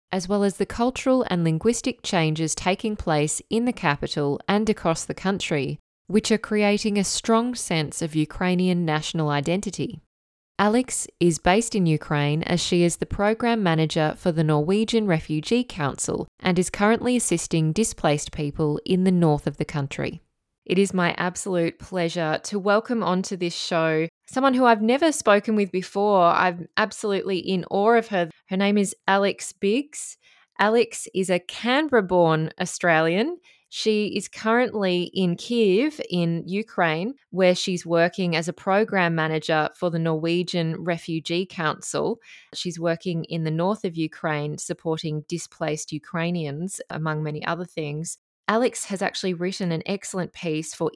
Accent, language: Australian, English